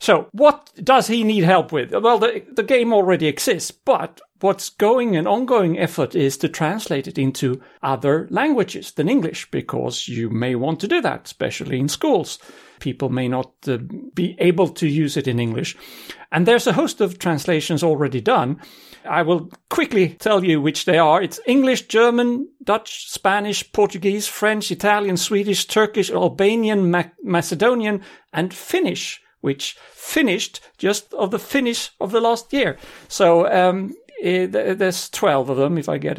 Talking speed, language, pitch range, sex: 165 wpm, English, 145-210 Hz, male